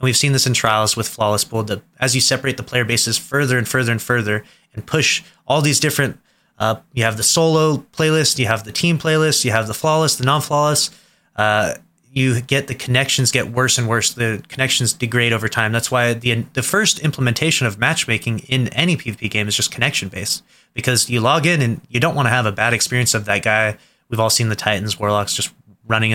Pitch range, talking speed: 110-135 Hz, 220 wpm